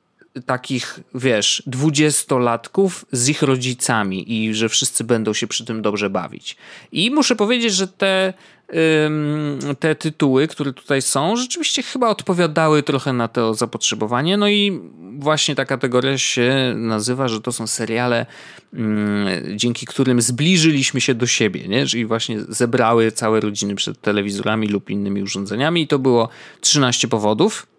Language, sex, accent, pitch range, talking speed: Polish, male, native, 110-155 Hz, 140 wpm